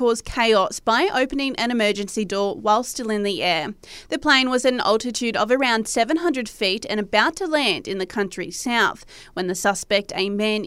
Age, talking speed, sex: 30-49, 195 wpm, female